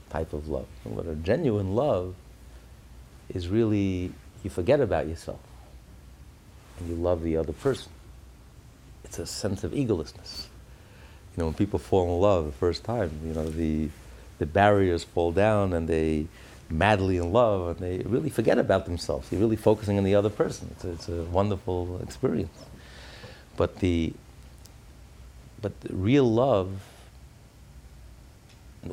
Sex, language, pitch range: male, English, 80-100 Hz